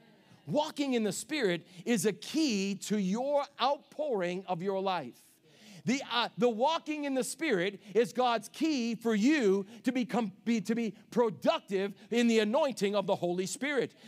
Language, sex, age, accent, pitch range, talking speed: English, male, 50-69, American, 215-285 Hz, 160 wpm